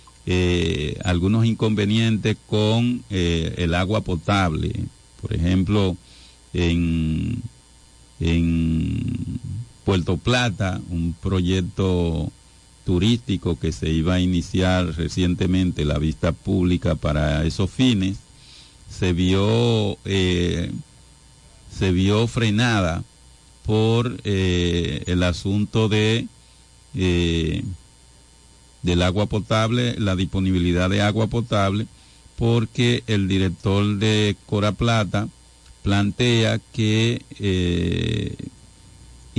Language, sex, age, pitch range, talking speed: Spanish, male, 50-69, 85-110 Hz, 85 wpm